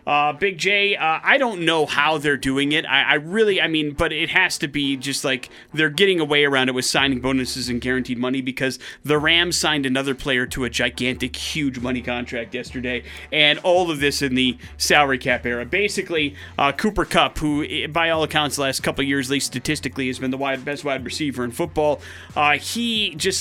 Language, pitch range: English, 135-175 Hz